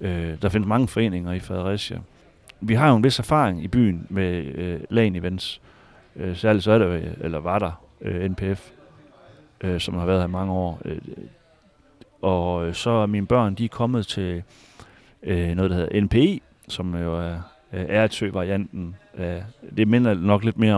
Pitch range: 95-115 Hz